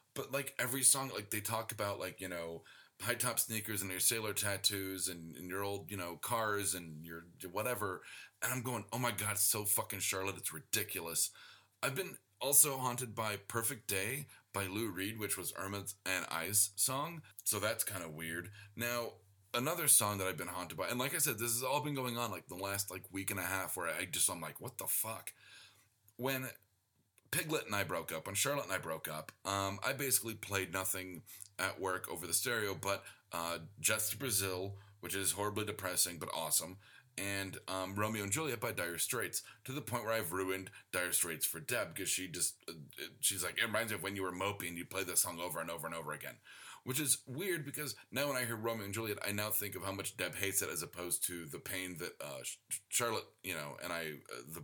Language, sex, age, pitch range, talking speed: English, male, 30-49, 95-115 Hz, 220 wpm